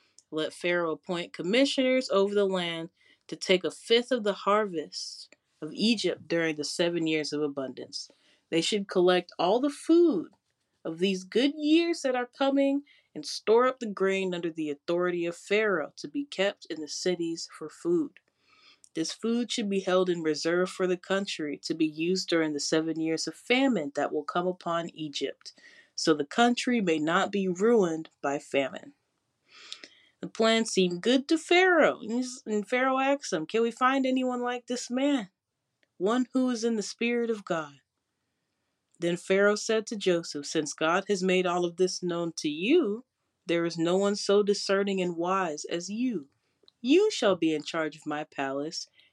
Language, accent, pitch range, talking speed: English, American, 165-245 Hz, 175 wpm